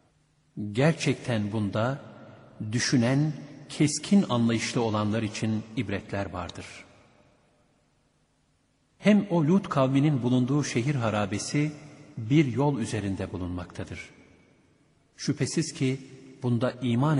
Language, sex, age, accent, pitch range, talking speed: Turkish, male, 50-69, native, 105-145 Hz, 85 wpm